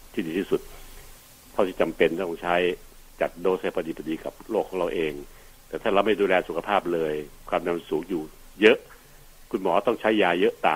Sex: male